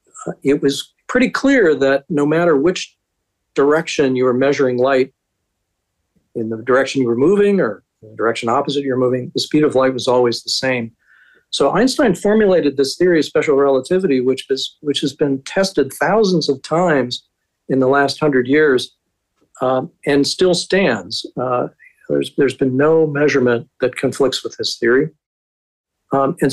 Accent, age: American, 50-69